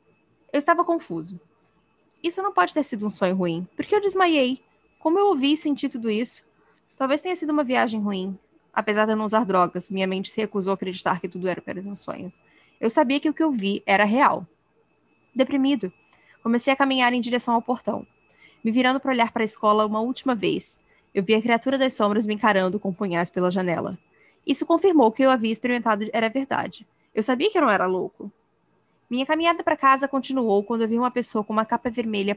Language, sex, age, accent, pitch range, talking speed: Portuguese, female, 10-29, Brazilian, 205-275 Hz, 215 wpm